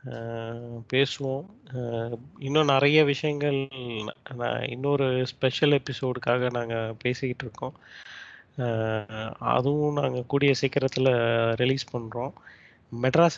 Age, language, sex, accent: 20-39, Tamil, male, native